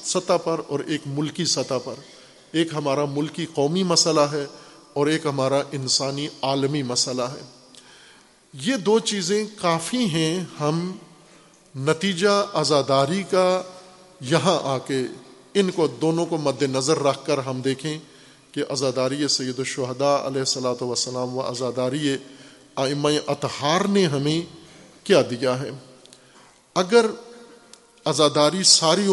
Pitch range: 135-165 Hz